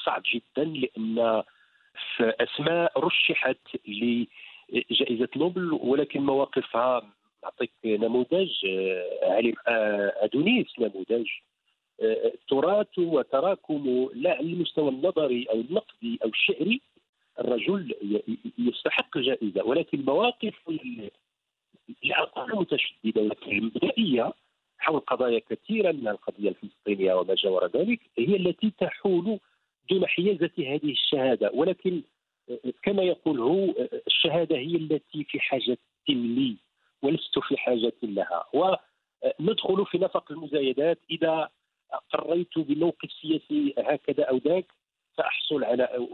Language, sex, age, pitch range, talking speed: English, male, 50-69, 125-190 Hz, 95 wpm